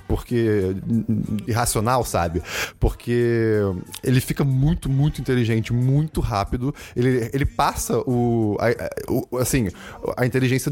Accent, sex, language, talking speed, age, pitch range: Brazilian, male, Portuguese, 120 wpm, 20-39, 110-130 Hz